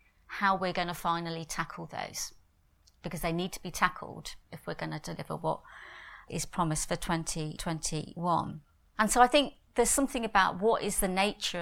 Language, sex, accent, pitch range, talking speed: English, female, British, 170-205 Hz, 175 wpm